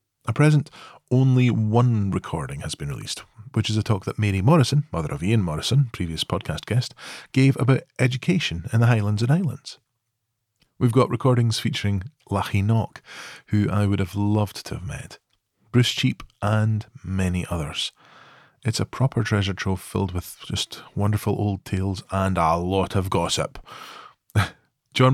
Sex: male